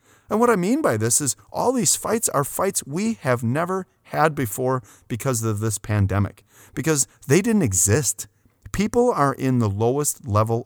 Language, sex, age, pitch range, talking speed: English, male, 30-49, 105-145 Hz, 175 wpm